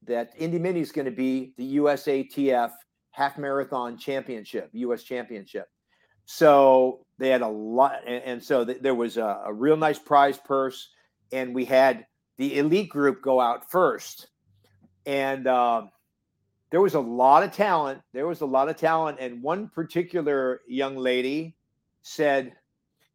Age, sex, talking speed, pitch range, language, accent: 50-69, male, 155 wpm, 125-160 Hz, English, American